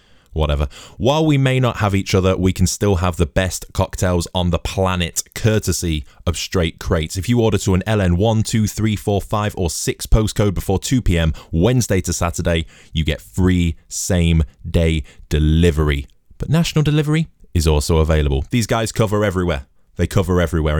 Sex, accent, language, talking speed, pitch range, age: male, British, English, 165 wpm, 80-100 Hz, 20-39